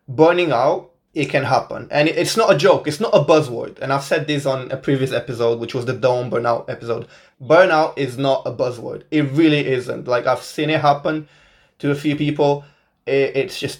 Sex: male